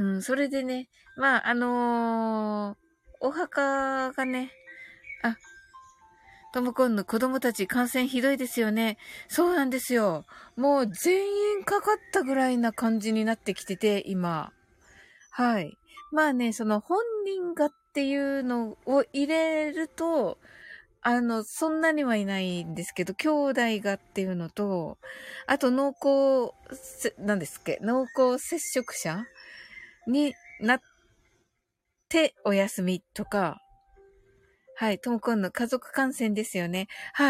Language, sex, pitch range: Japanese, female, 210-280 Hz